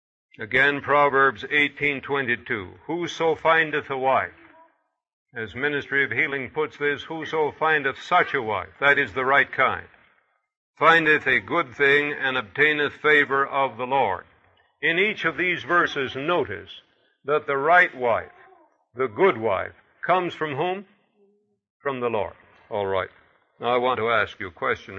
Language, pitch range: English, 135-175 Hz